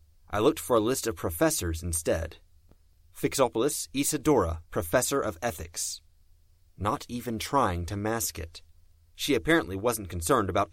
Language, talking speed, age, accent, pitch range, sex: English, 135 wpm, 30-49, American, 85-110 Hz, male